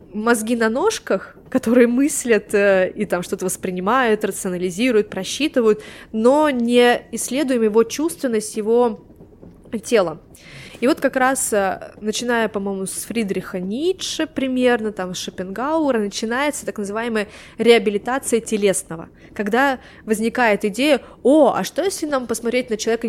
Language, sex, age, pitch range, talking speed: Russian, female, 20-39, 210-270 Hz, 120 wpm